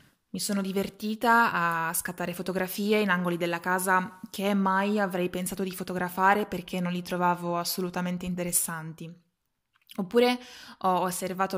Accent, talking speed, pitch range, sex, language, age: Italian, 130 wpm, 180-205 Hz, female, English, 20-39